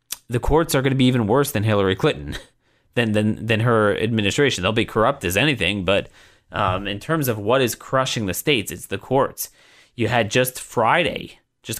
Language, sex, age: English, male, 30-49